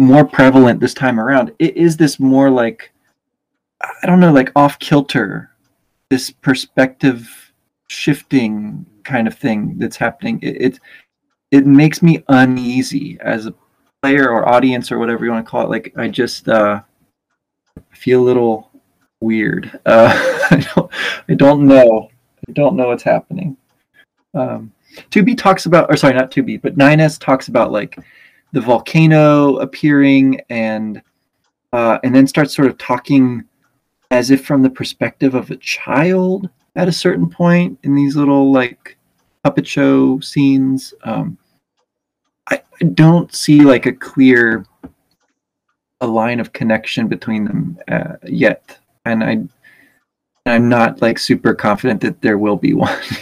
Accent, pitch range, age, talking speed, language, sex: American, 125-150 Hz, 20-39, 150 wpm, English, male